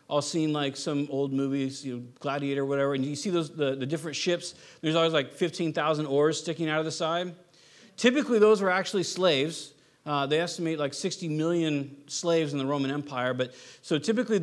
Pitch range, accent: 140-180 Hz, American